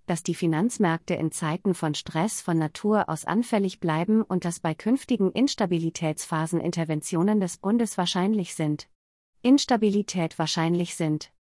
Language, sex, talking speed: German, female, 130 wpm